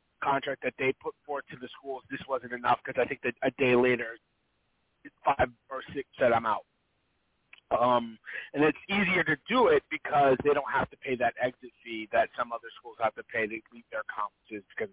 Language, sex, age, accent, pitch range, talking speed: English, male, 30-49, American, 125-140 Hz, 210 wpm